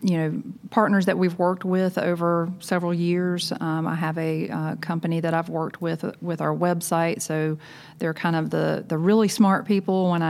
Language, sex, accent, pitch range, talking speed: English, female, American, 160-180 Hz, 190 wpm